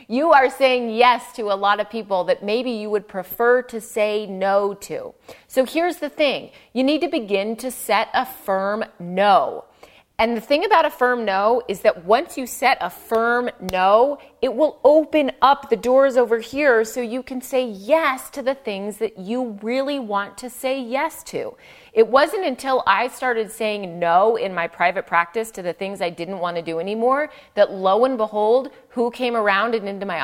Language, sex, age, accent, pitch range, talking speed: English, female, 30-49, American, 210-265 Hz, 200 wpm